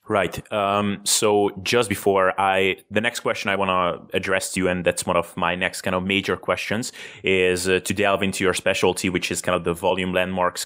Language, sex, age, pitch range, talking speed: English, male, 30-49, 90-110 Hz, 220 wpm